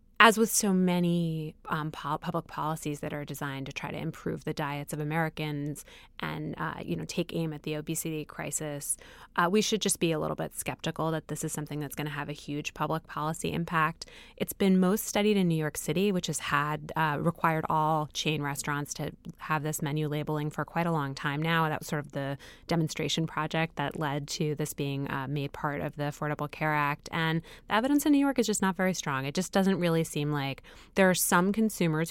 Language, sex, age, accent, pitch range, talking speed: English, female, 20-39, American, 145-180 Hz, 220 wpm